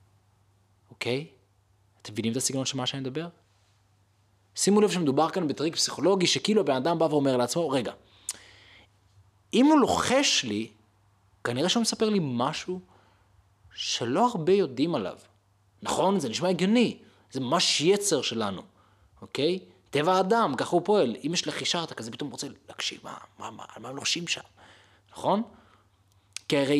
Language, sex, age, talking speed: Hebrew, male, 20-39, 150 wpm